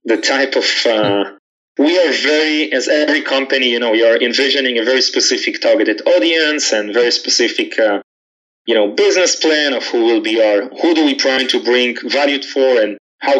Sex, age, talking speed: male, 30-49, 195 wpm